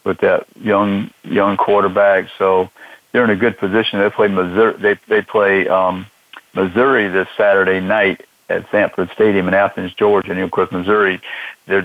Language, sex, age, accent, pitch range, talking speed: English, male, 50-69, American, 95-105 Hz, 165 wpm